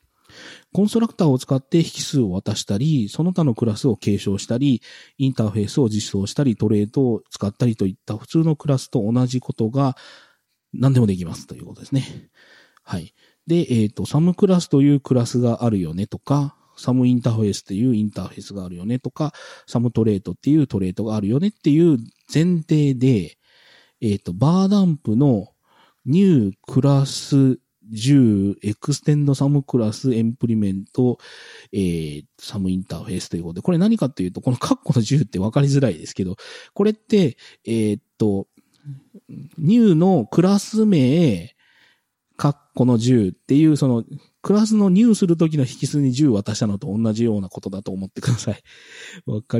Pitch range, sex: 105-145 Hz, male